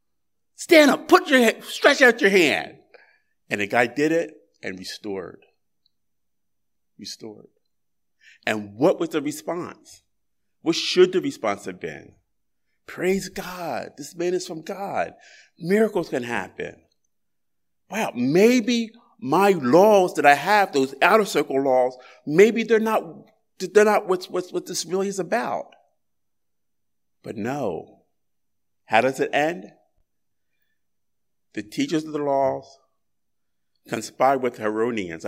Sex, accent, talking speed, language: male, American, 130 wpm, English